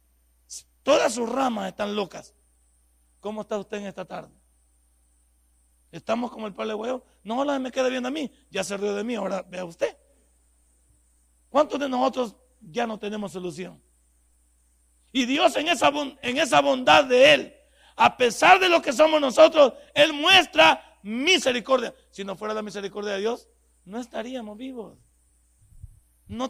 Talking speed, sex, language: 155 wpm, male, Spanish